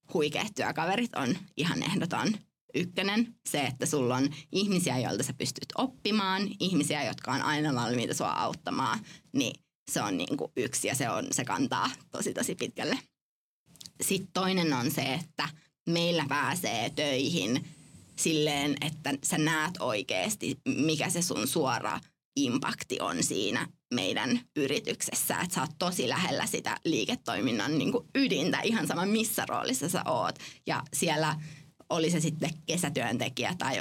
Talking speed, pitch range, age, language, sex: 140 wpm, 150-200 Hz, 20-39, English, female